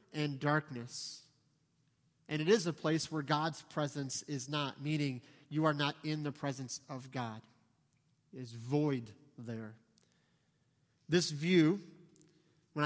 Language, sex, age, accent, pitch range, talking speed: English, male, 30-49, American, 145-180 Hz, 130 wpm